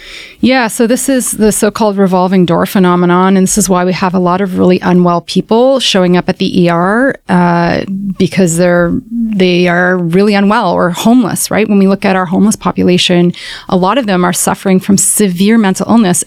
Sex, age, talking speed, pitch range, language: female, 30-49, 200 wpm, 180-220 Hz, English